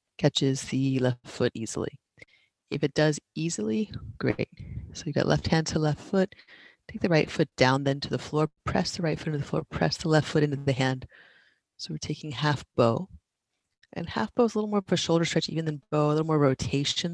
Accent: American